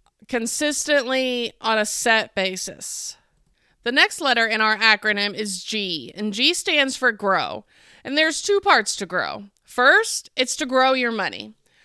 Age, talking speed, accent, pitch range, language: 30-49, 150 wpm, American, 220-295 Hz, English